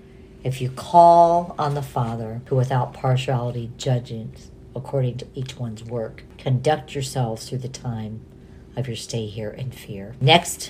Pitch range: 125-140 Hz